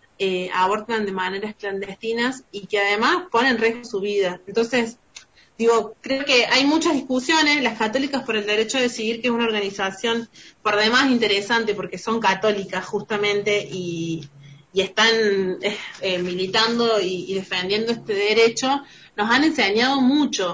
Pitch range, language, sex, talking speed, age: 200-235 Hz, Spanish, female, 150 wpm, 30-49